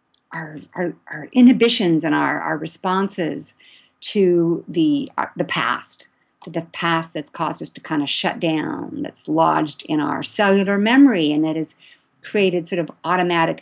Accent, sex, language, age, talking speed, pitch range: American, female, English, 50-69, 165 wpm, 165-210 Hz